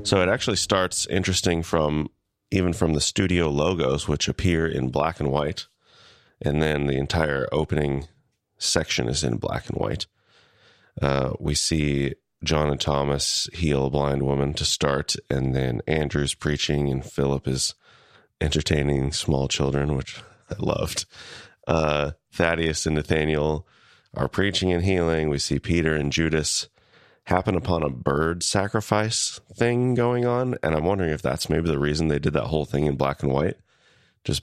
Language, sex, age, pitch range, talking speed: English, male, 30-49, 70-85 Hz, 160 wpm